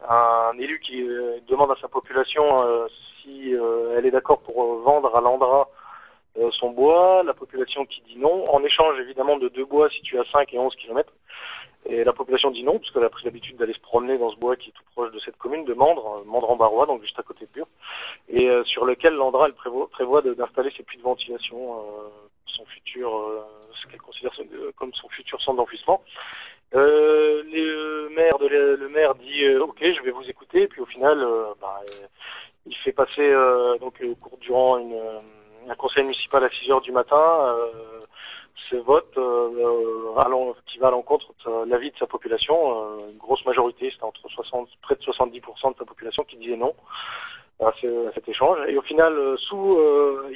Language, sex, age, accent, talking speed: French, male, 30-49, French, 210 wpm